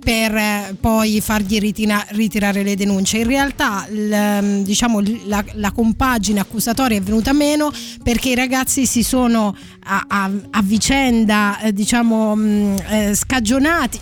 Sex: female